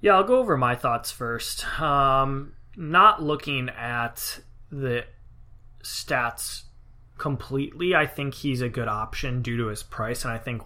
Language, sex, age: English, male, 20-39